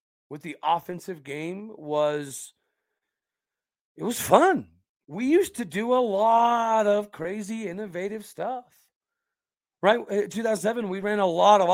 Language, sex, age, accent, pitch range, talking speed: English, male, 40-59, American, 155-195 Hz, 135 wpm